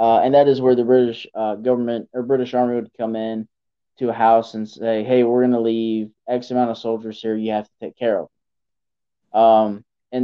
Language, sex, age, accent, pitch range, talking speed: English, male, 20-39, American, 110-125 Hz, 230 wpm